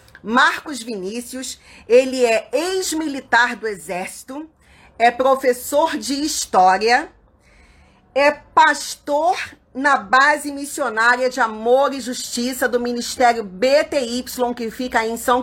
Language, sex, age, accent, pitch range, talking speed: Portuguese, female, 40-59, Brazilian, 240-300 Hz, 105 wpm